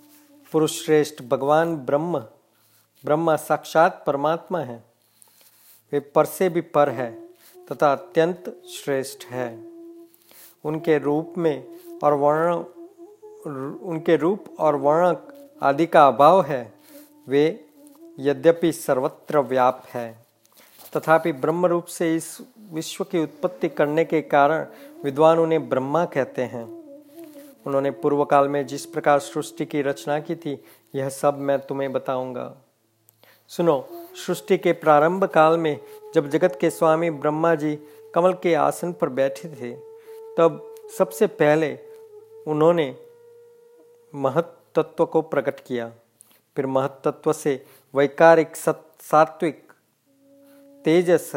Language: Hindi